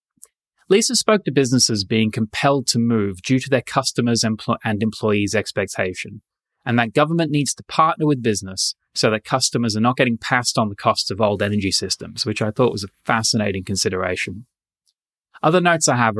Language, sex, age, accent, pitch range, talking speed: English, male, 20-39, Australian, 105-130 Hz, 180 wpm